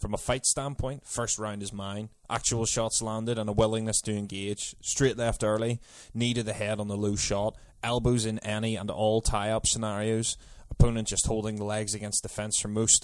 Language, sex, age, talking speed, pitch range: English, male, 20-39, 205 wpm, 100-110 Hz